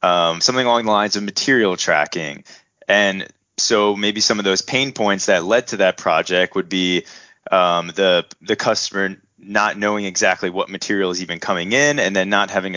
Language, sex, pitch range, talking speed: English, male, 95-110 Hz, 190 wpm